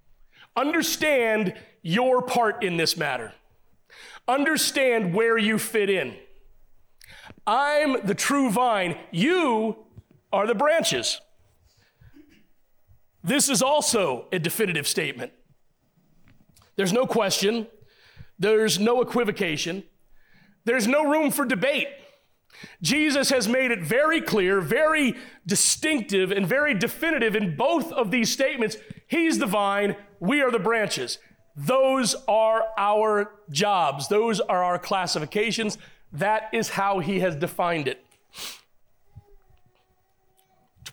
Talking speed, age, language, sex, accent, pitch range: 110 wpm, 40-59, English, male, American, 185-255 Hz